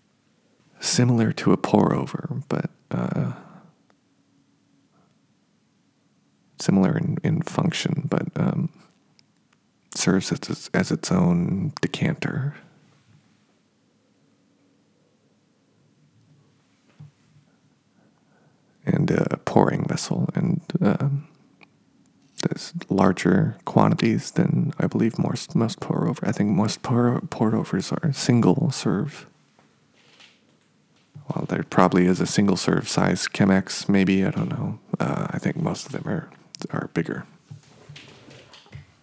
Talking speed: 95 wpm